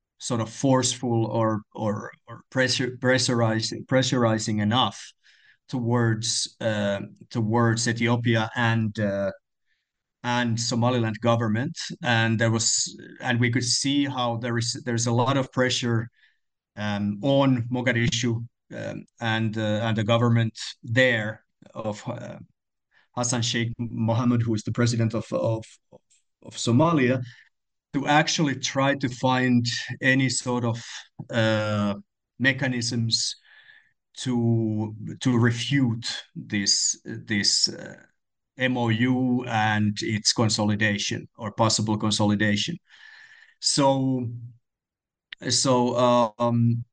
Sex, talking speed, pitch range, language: male, 105 wpm, 115-130 Hz, English